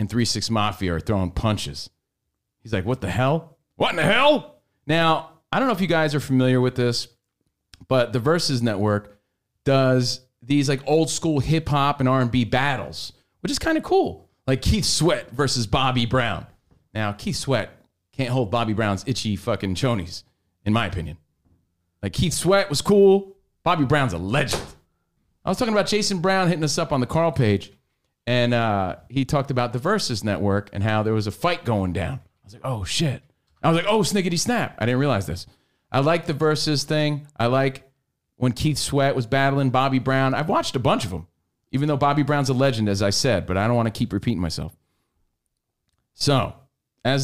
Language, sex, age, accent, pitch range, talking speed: English, male, 30-49, American, 105-145 Hz, 195 wpm